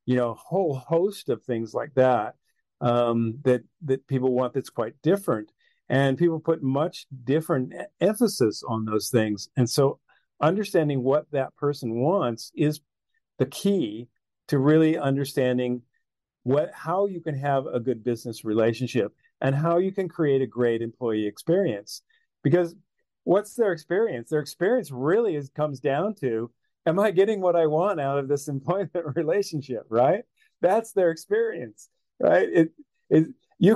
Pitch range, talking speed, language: 135-175 Hz, 155 wpm, English